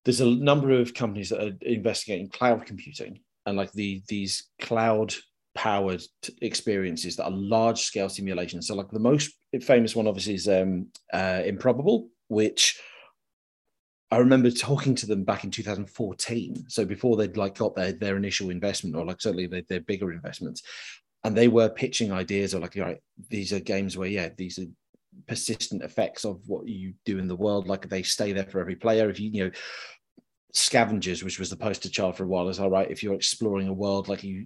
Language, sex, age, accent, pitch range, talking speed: English, male, 30-49, British, 95-115 Hz, 195 wpm